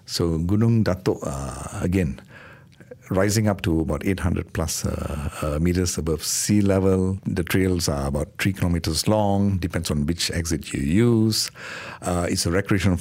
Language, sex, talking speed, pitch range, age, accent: English, male, 150 wpm, 85-110 Hz, 60-79, Indian